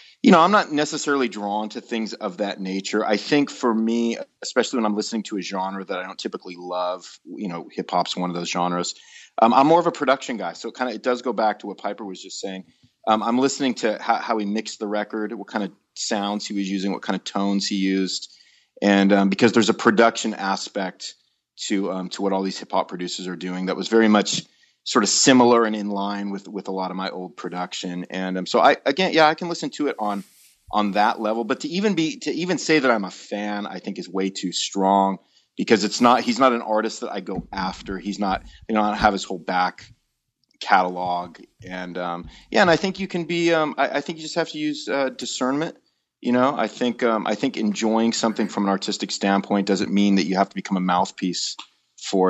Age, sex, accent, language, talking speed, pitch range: 30-49, male, American, English, 245 wpm, 95-120 Hz